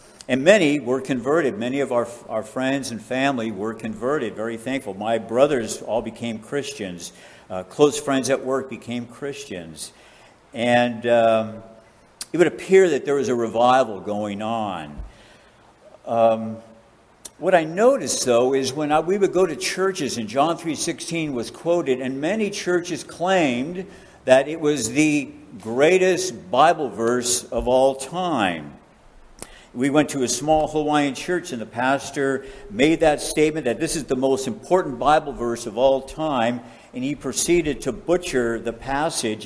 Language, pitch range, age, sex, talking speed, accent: English, 110-150 Hz, 60-79, male, 155 wpm, American